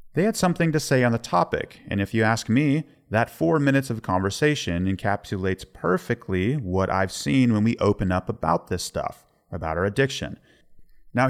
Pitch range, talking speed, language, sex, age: 95-135 Hz, 180 wpm, English, male, 30-49